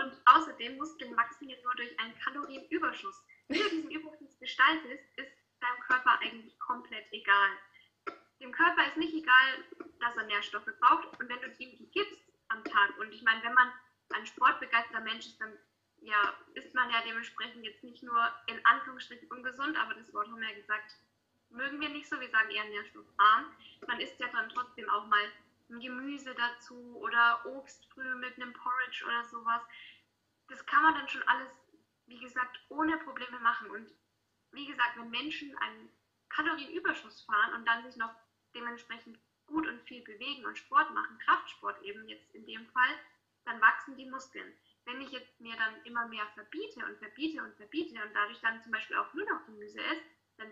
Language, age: German, 10-29